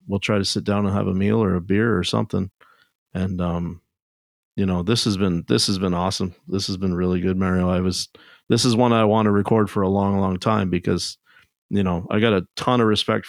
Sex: male